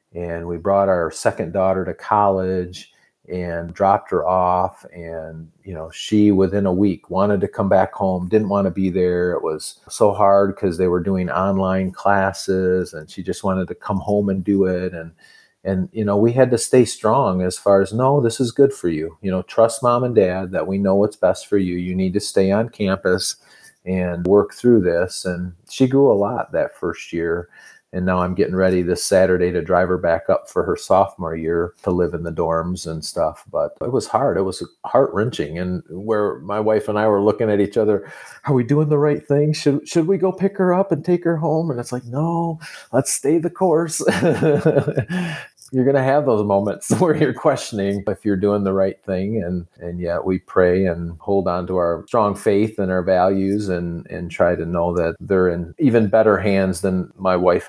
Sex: male